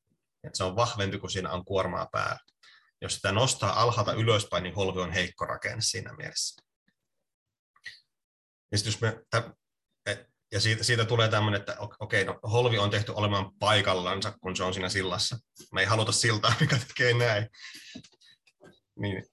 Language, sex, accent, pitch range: Finnish, male, native, 95-110 Hz